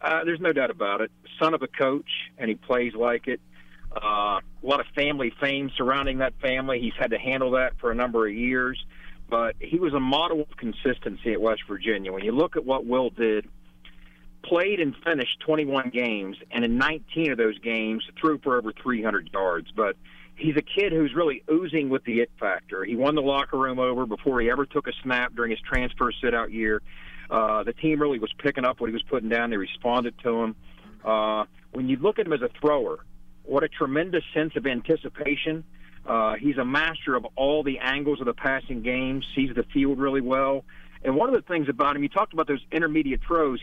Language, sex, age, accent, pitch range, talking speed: English, male, 50-69, American, 115-150 Hz, 215 wpm